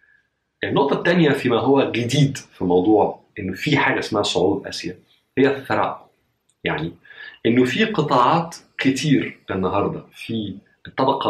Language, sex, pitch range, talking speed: Arabic, male, 105-140 Hz, 120 wpm